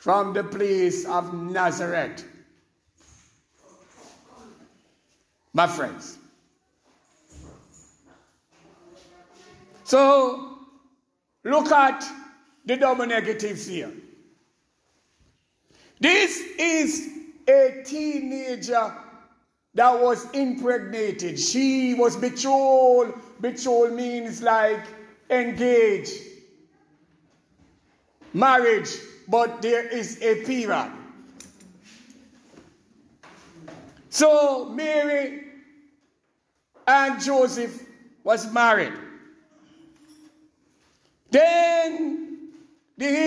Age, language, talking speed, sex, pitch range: 60-79, English, 60 wpm, male, 205-285 Hz